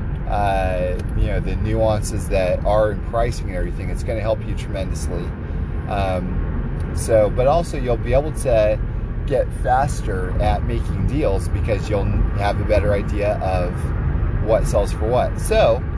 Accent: American